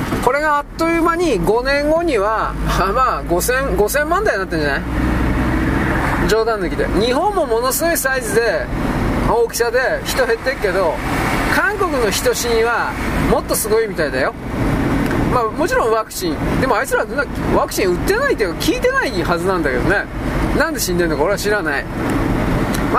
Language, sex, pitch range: Japanese, male, 200-320 Hz